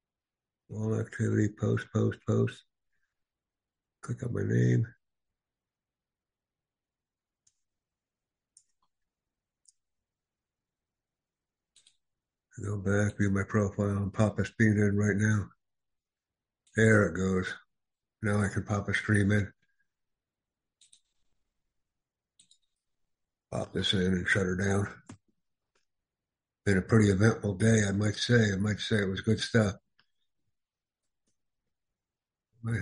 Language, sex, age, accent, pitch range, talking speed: English, male, 60-79, American, 100-115 Hz, 100 wpm